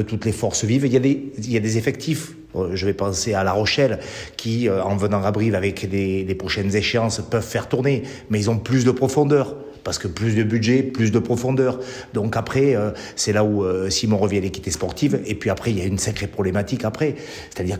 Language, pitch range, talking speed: French, 100-125 Hz, 225 wpm